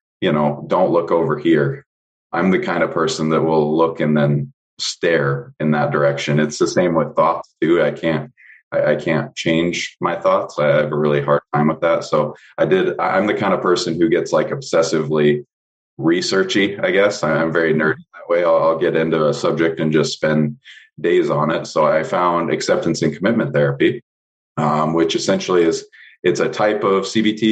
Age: 20-39